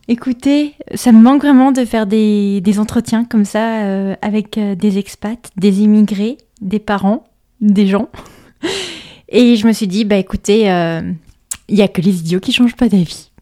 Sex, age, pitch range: female, 20-39, 195-235 Hz